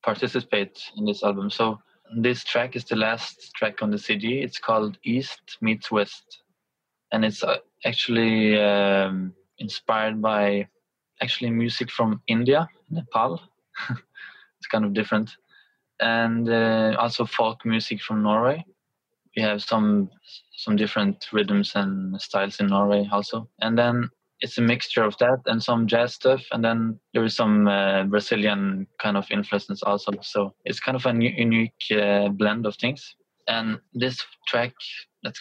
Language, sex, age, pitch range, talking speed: English, male, 20-39, 105-115 Hz, 150 wpm